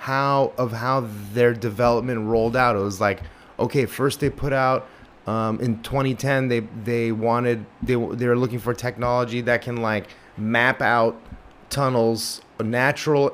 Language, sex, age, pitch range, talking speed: English, male, 30-49, 110-130 Hz, 155 wpm